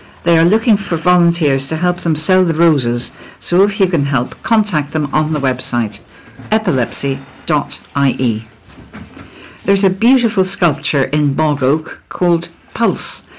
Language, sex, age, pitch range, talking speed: English, female, 60-79, 140-180 Hz, 140 wpm